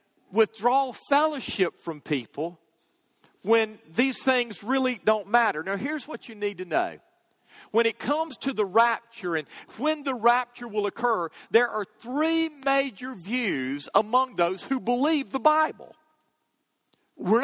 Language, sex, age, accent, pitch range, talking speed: English, male, 40-59, American, 210-260 Hz, 140 wpm